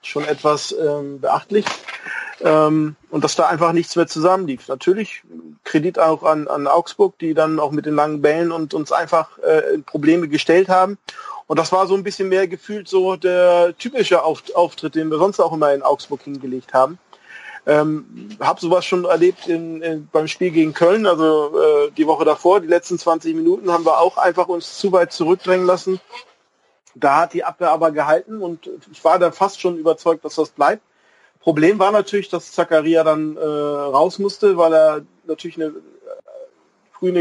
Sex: male